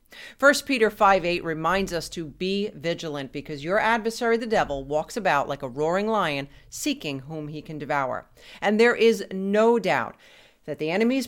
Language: English